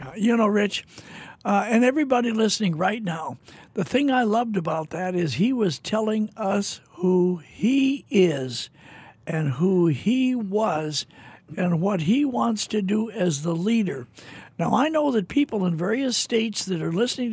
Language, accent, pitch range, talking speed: English, American, 180-235 Hz, 165 wpm